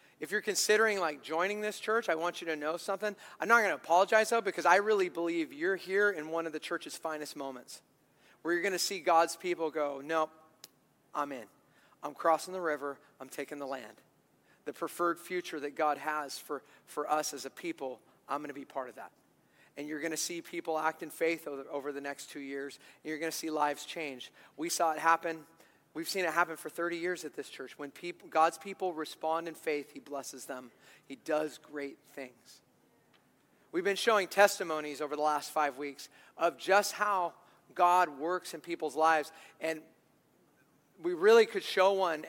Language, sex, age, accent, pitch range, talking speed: English, male, 40-59, American, 150-195 Hz, 200 wpm